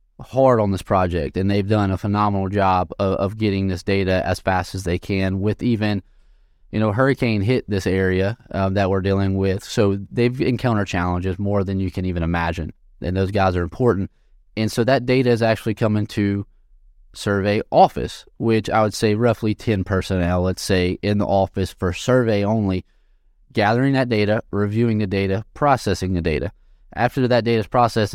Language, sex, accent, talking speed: English, male, American, 185 wpm